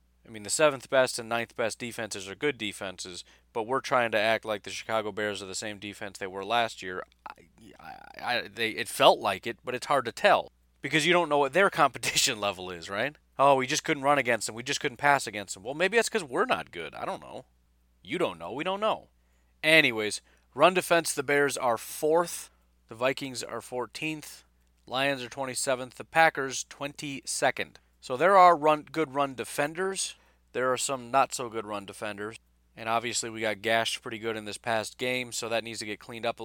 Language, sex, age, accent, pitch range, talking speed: English, male, 30-49, American, 105-135 Hz, 210 wpm